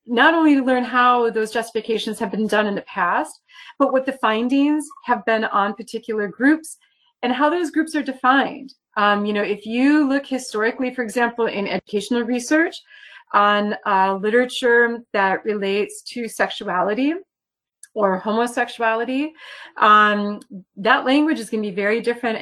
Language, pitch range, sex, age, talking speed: English, 195-270 Hz, female, 30-49, 155 wpm